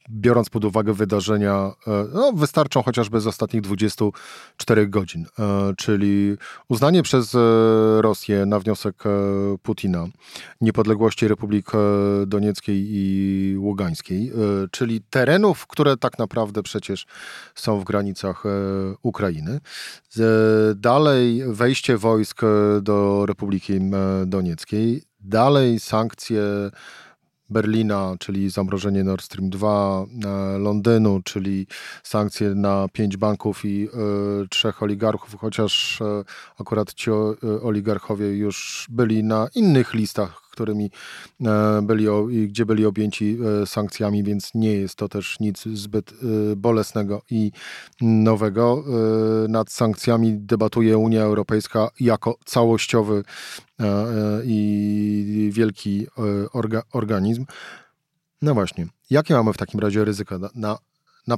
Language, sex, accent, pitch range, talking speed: Polish, male, native, 100-115 Hz, 100 wpm